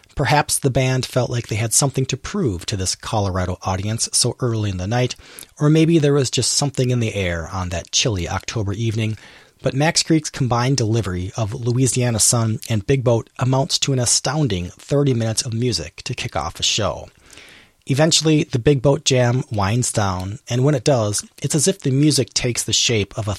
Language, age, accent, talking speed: English, 30-49, American, 200 wpm